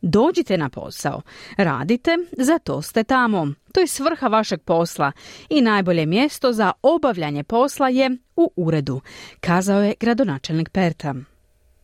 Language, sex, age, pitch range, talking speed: Croatian, female, 30-49, 175-260 Hz, 125 wpm